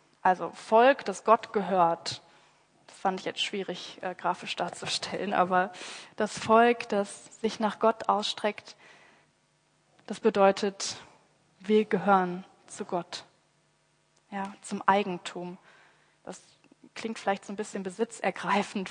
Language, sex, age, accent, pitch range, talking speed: German, female, 20-39, German, 185-225 Hz, 115 wpm